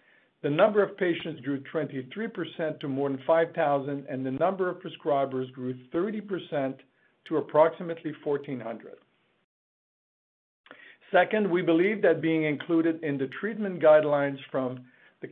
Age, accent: 50-69, American